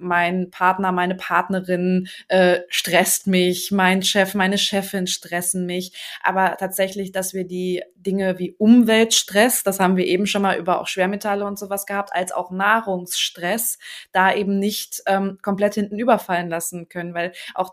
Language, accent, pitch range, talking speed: German, German, 185-215 Hz, 160 wpm